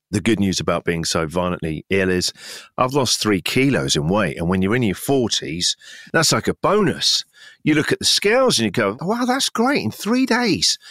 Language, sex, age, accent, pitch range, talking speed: English, male, 40-59, British, 85-110 Hz, 215 wpm